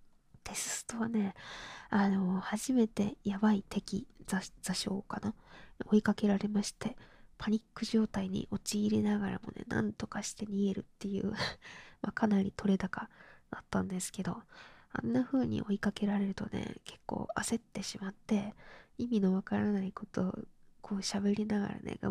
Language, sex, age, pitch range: Japanese, female, 20-39, 195-215 Hz